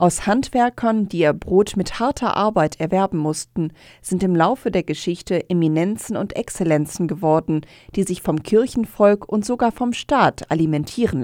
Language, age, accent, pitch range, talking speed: German, 40-59, German, 160-210 Hz, 150 wpm